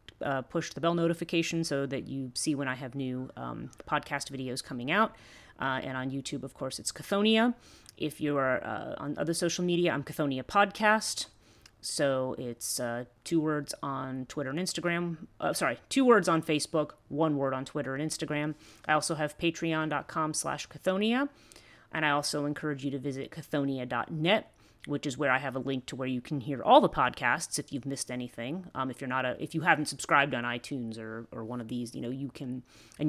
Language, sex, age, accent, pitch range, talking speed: English, female, 30-49, American, 125-155 Hz, 200 wpm